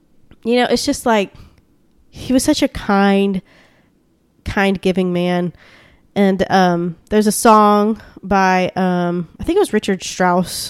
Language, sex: English, female